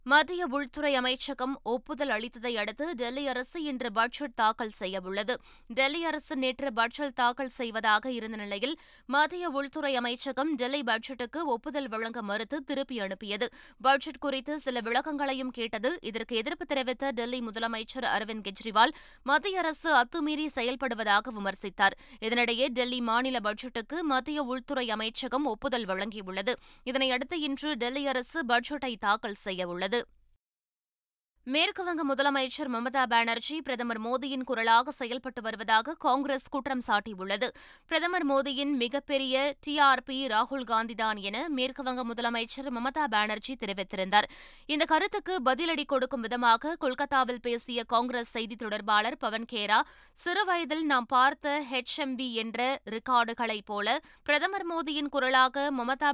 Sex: female